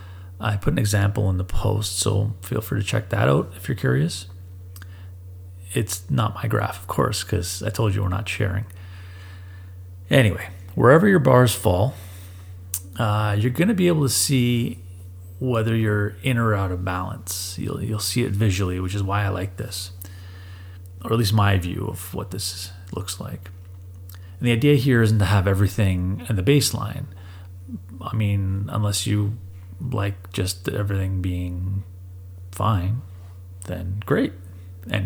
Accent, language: American, English